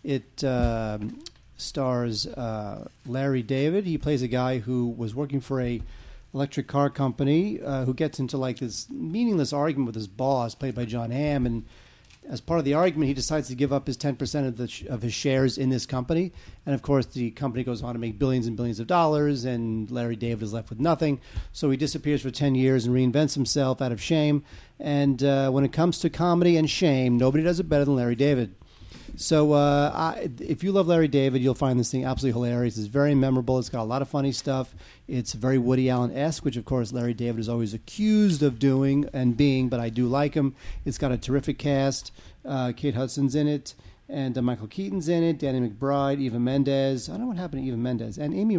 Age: 40-59